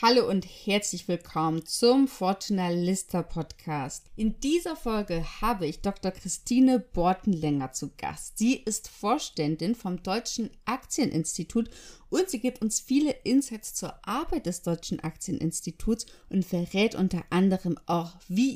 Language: German